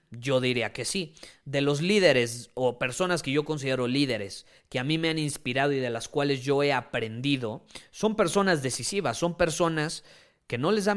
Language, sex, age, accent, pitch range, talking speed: Spanish, male, 30-49, Mexican, 125-165 Hz, 190 wpm